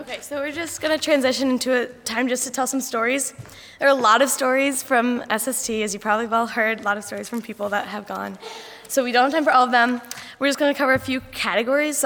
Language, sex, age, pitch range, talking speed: English, female, 10-29, 215-270 Hz, 280 wpm